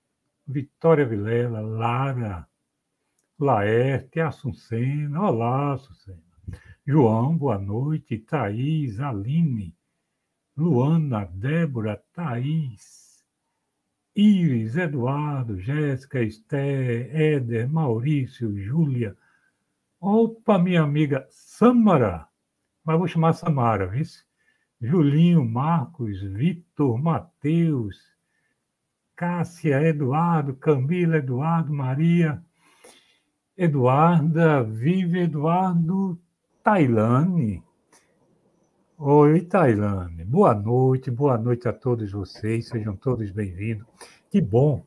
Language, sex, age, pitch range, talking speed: Portuguese, male, 60-79, 115-165 Hz, 80 wpm